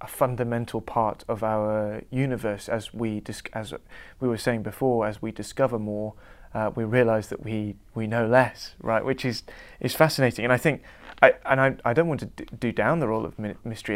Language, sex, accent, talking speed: English, male, British, 200 wpm